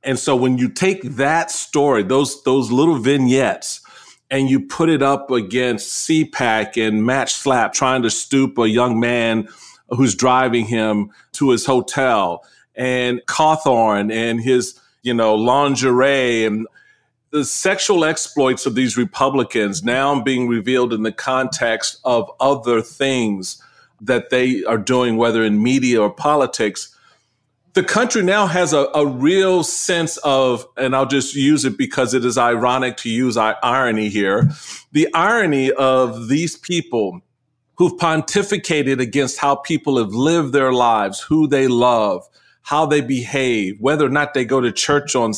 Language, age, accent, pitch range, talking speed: English, 40-59, American, 120-145 Hz, 155 wpm